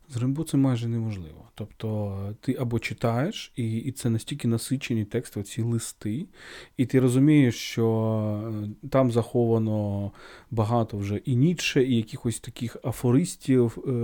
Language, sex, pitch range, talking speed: Ukrainian, male, 110-135 Hz, 135 wpm